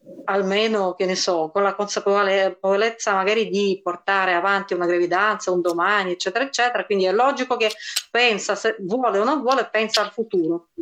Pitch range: 200-270 Hz